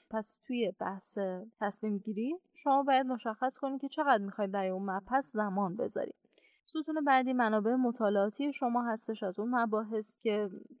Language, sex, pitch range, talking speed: Persian, female, 205-255 Hz, 150 wpm